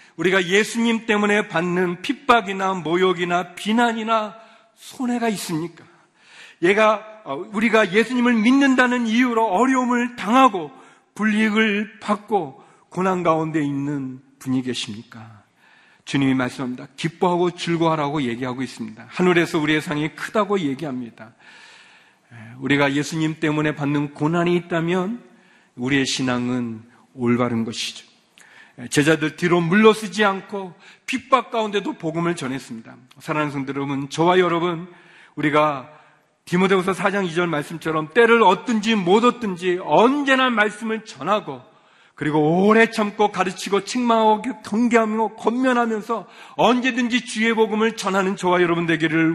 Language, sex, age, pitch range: Korean, male, 40-59, 150-225 Hz